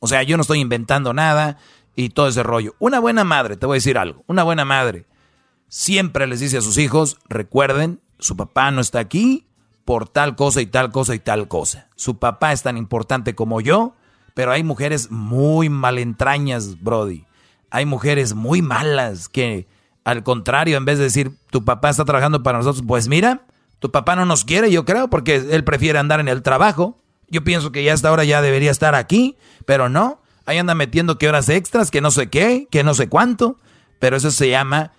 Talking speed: 205 wpm